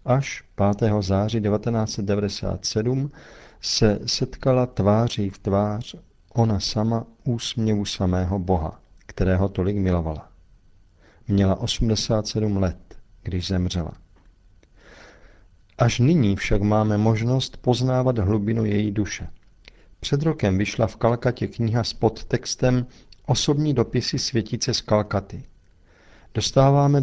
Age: 50-69